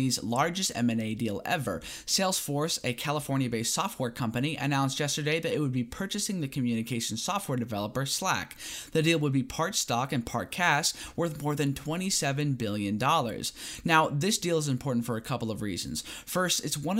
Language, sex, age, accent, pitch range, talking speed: English, male, 10-29, American, 120-160 Hz, 170 wpm